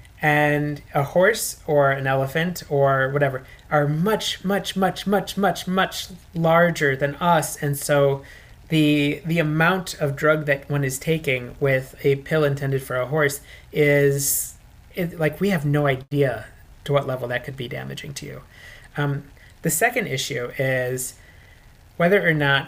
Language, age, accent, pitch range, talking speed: English, 30-49, American, 135-165 Hz, 160 wpm